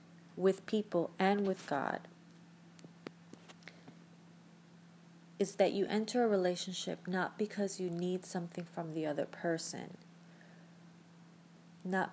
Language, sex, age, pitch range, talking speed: English, female, 30-49, 170-185 Hz, 105 wpm